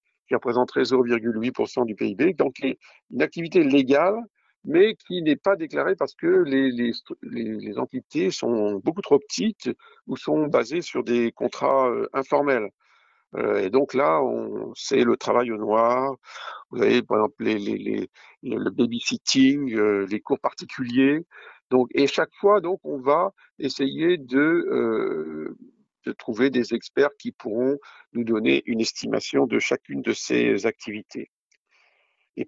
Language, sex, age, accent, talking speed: French, male, 50-69, French, 150 wpm